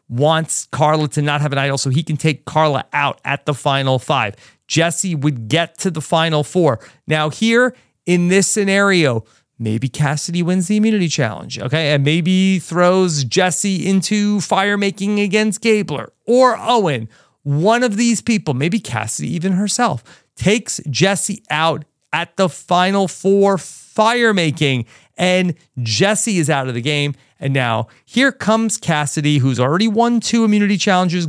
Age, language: 30-49, English